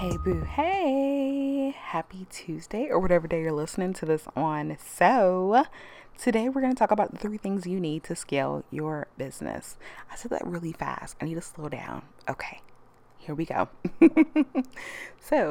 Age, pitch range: 20-39, 140-190 Hz